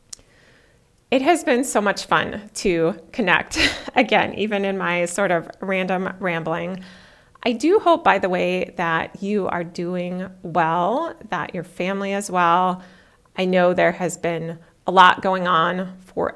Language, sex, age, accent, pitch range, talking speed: English, female, 30-49, American, 170-200 Hz, 155 wpm